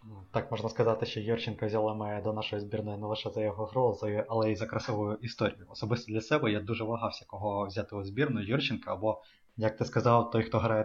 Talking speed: 210 wpm